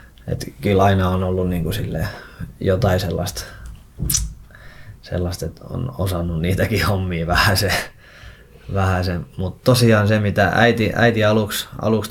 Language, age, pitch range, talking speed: Finnish, 20-39, 90-110 Hz, 125 wpm